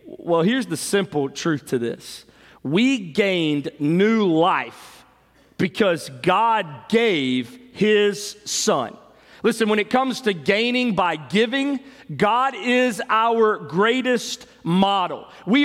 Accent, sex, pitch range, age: American, male, 155-225 Hz, 40-59